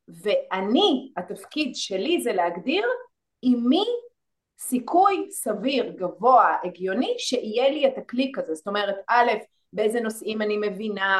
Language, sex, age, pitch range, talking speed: Hebrew, female, 30-49, 205-265 Hz, 120 wpm